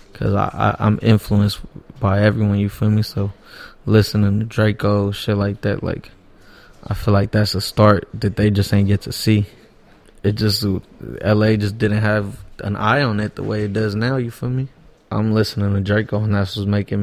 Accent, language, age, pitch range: American, English, 20-39, 100-105 Hz